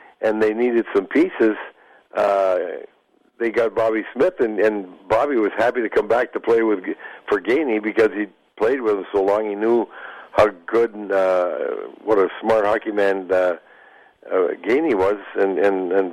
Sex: male